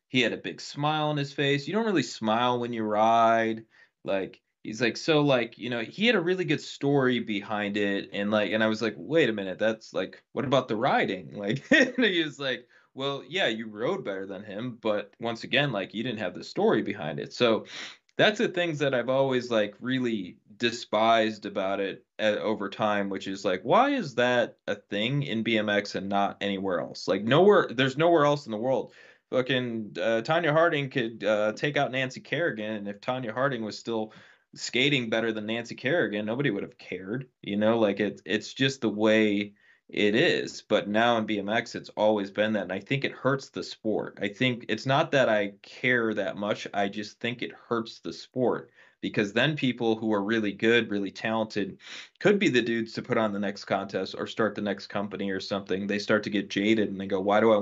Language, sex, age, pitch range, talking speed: English, male, 20-39, 105-130 Hz, 210 wpm